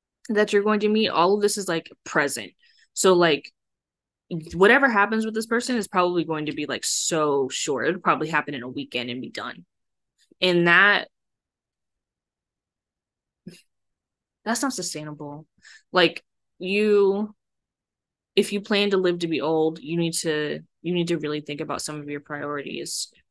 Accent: American